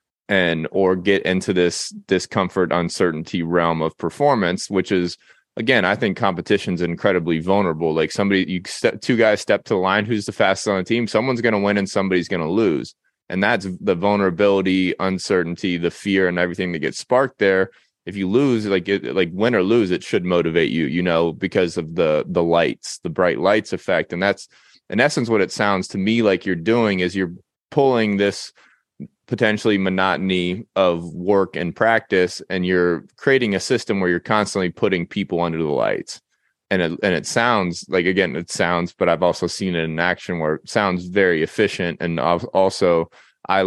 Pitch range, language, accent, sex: 85-100 Hz, English, American, male